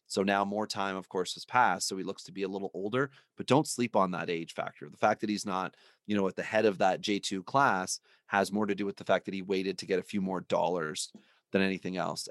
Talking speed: 275 wpm